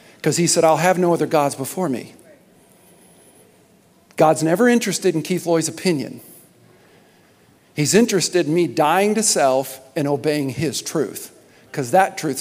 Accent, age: American, 50-69